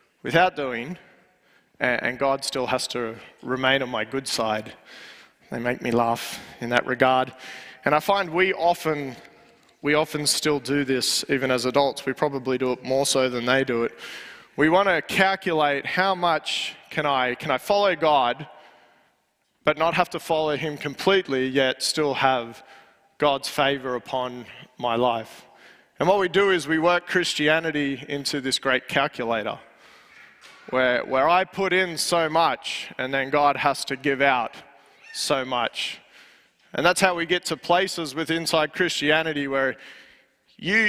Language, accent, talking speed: English, Australian, 160 wpm